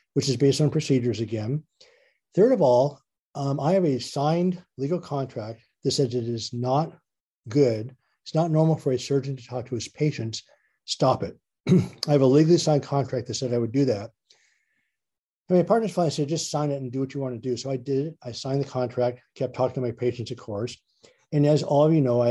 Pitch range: 125-150 Hz